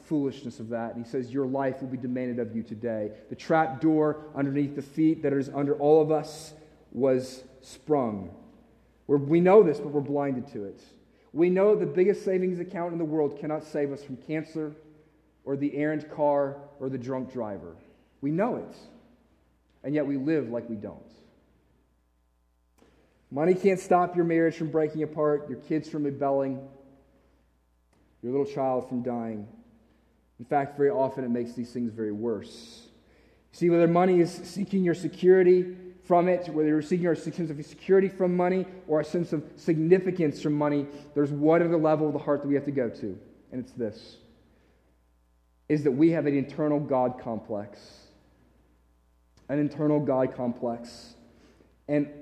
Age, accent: 30-49, American